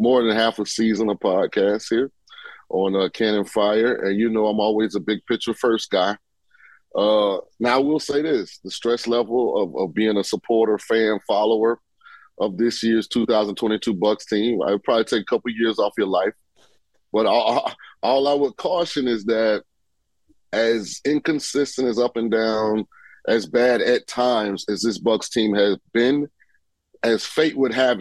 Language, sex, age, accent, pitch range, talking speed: English, male, 30-49, American, 105-125 Hz, 175 wpm